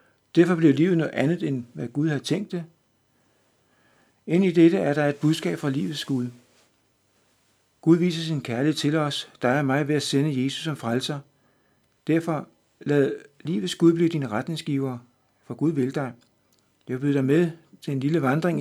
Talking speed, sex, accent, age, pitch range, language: 175 wpm, male, native, 60-79, 135-165 Hz, Danish